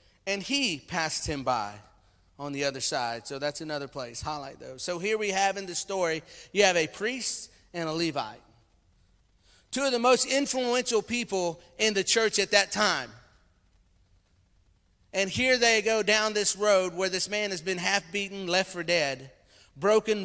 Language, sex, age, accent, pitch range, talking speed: English, male, 30-49, American, 140-205 Hz, 175 wpm